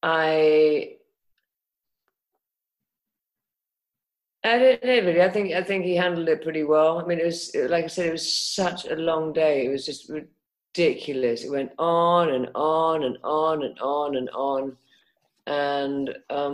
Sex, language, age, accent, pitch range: female, English, 40-59, British, 130-160 Hz